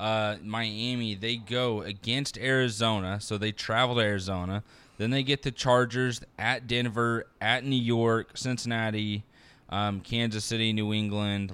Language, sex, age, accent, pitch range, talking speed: English, male, 20-39, American, 110-150 Hz, 140 wpm